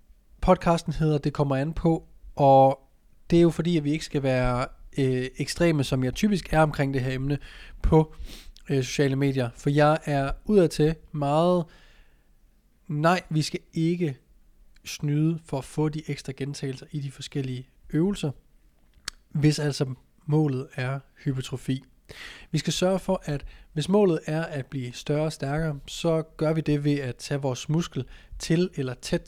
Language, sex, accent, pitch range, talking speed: Danish, male, native, 135-165 Hz, 165 wpm